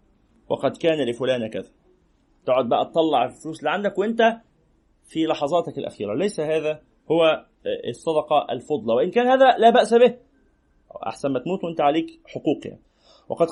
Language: Arabic